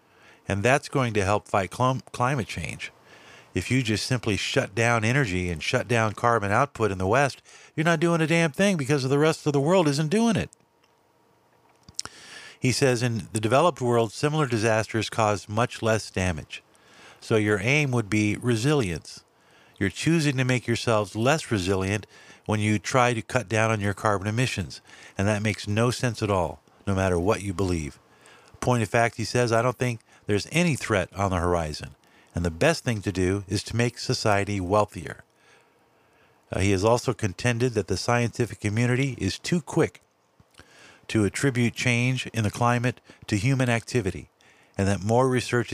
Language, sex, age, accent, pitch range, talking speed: English, male, 50-69, American, 100-125 Hz, 175 wpm